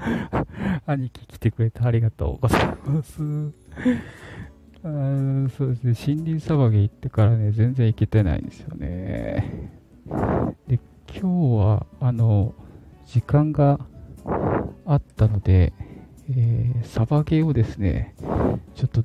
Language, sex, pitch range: Japanese, male, 105-135 Hz